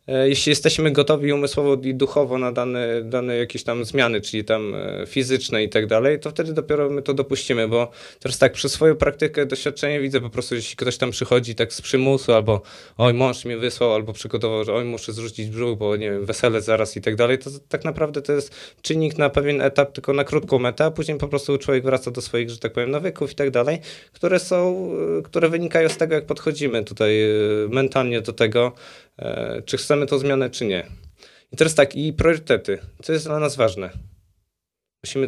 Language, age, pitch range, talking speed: Polish, 20-39, 115-140 Hz, 200 wpm